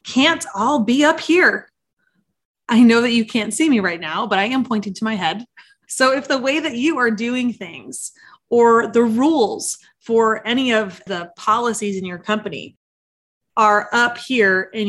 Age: 20-39